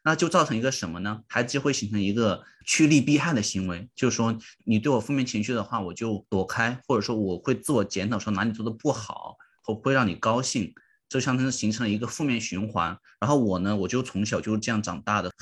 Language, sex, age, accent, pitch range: Chinese, male, 20-39, native, 95-120 Hz